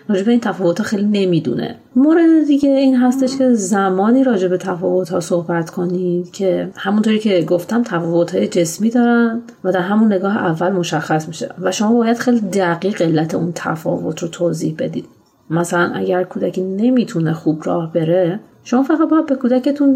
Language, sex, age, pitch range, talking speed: Persian, female, 30-49, 175-245 Hz, 160 wpm